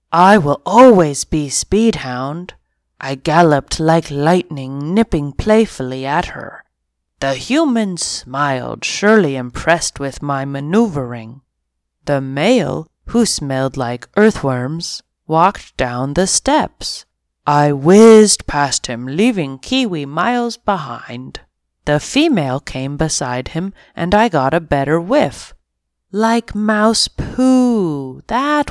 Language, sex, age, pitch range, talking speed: English, female, 30-49, 130-190 Hz, 115 wpm